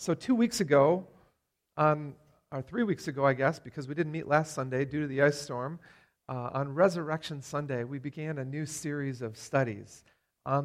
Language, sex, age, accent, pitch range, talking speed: English, male, 40-59, American, 135-165 Hz, 190 wpm